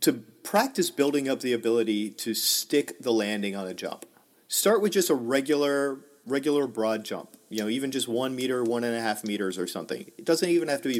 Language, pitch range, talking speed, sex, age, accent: English, 110-165 Hz, 220 wpm, male, 40-59, American